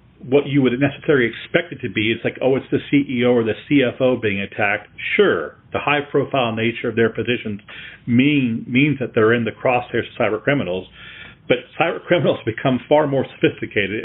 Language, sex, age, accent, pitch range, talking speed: English, male, 40-59, American, 110-135 Hz, 185 wpm